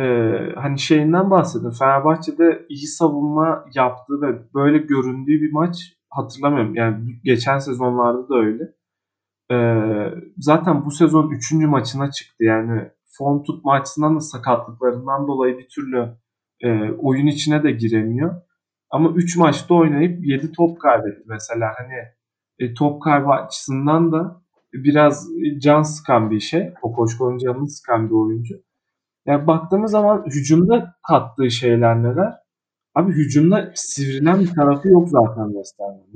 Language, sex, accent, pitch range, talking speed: Turkish, male, native, 125-165 Hz, 135 wpm